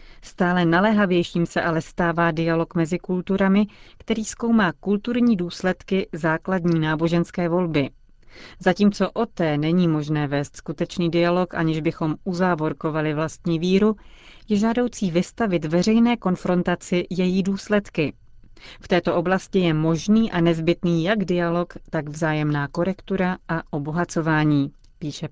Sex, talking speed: female, 120 wpm